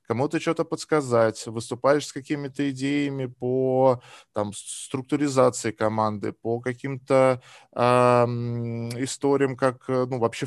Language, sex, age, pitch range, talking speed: Russian, male, 20-39, 110-130 Hz, 105 wpm